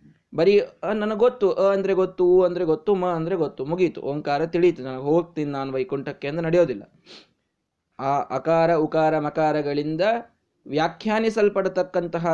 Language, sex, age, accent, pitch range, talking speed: Kannada, male, 20-39, native, 155-195 Hz, 125 wpm